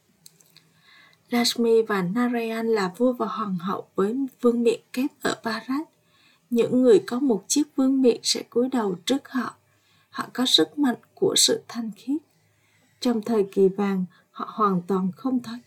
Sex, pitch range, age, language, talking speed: female, 205-250 Hz, 20-39, Vietnamese, 165 wpm